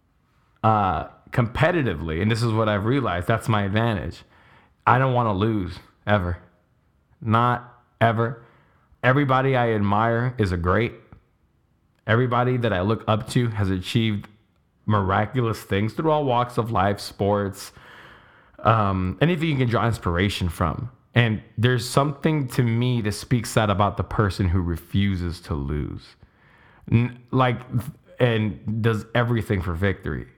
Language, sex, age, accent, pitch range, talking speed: English, male, 20-39, American, 105-125 Hz, 135 wpm